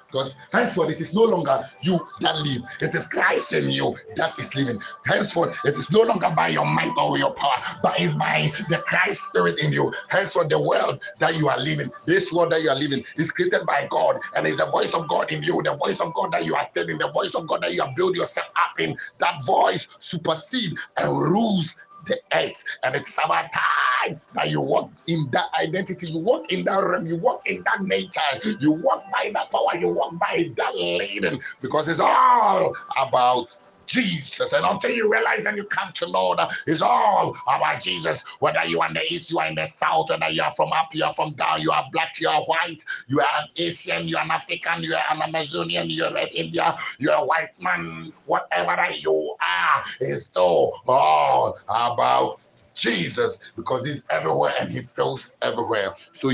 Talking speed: 210 wpm